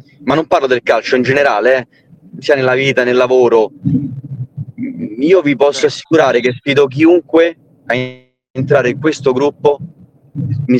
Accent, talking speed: native, 145 wpm